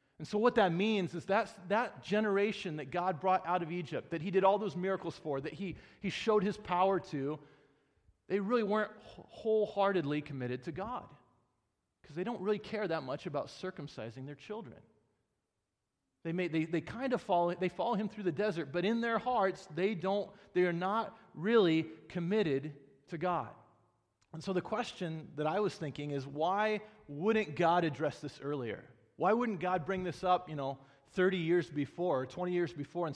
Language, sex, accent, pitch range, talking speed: English, male, American, 145-195 Hz, 185 wpm